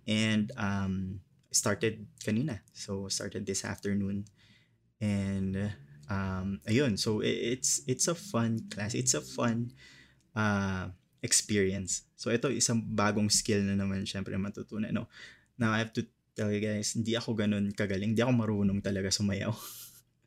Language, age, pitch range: Filipino, 20-39, 100-120 Hz